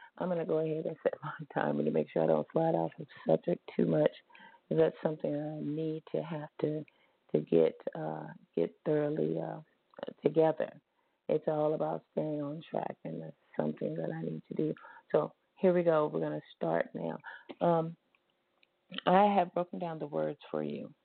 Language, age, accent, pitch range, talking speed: English, 40-59, American, 150-175 Hz, 195 wpm